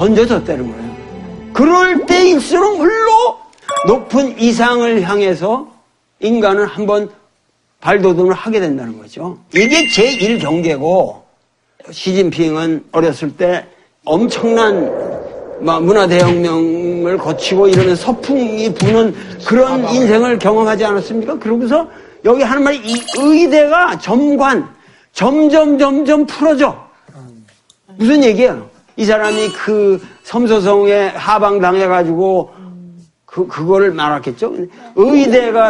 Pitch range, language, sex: 180-280 Hz, Korean, male